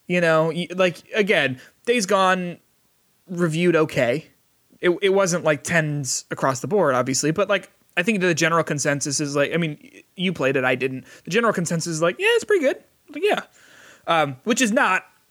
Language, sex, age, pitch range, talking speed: English, male, 20-39, 140-185 Hz, 190 wpm